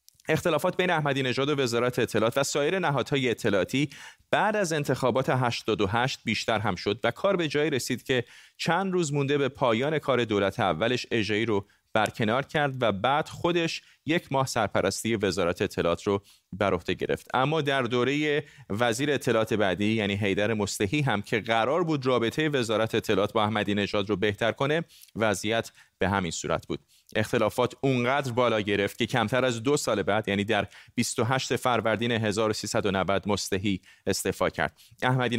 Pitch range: 105-135 Hz